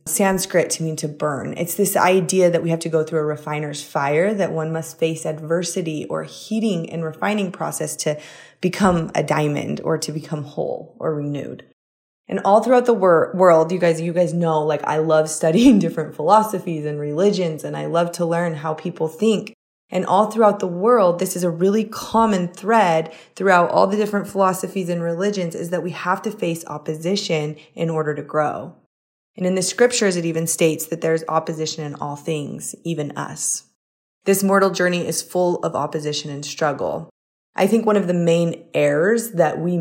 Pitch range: 155-190 Hz